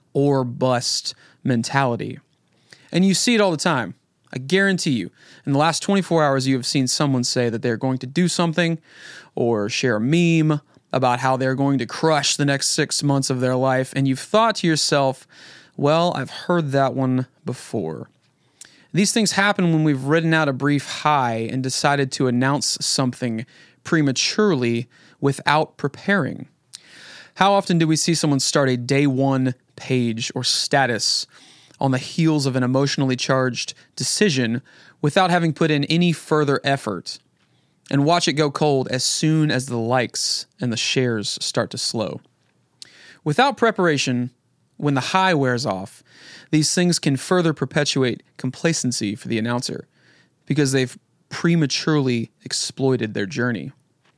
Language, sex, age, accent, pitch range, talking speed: English, male, 20-39, American, 130-160 Hz, 155 wpm